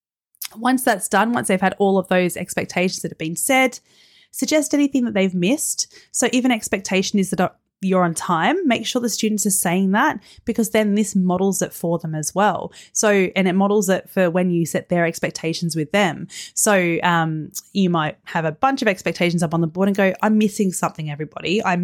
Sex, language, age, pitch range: female, English, 30-49, 170-215 Hz